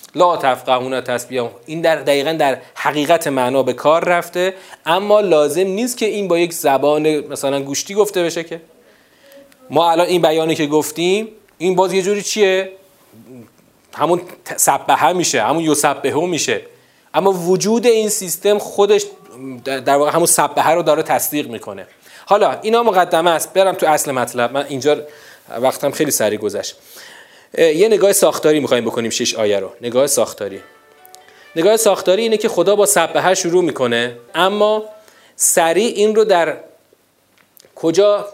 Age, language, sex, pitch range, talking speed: 30-49, Persian, male, 145-195 Hz, 150 wpm